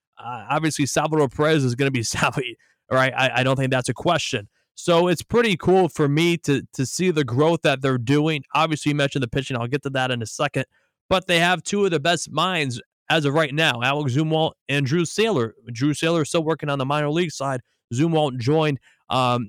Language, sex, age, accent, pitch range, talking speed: English, male, 20-39, American, 130-160 Hz, 225 wpm